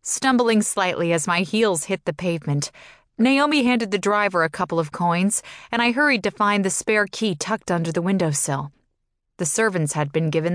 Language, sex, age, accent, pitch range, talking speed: English, female, 20-39, American, 155-205 Hz, 190 wpm